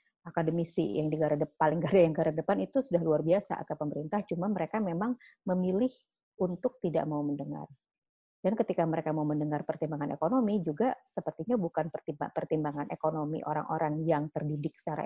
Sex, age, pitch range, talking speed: female, 30-49, 155-195 Hz, 150 wpm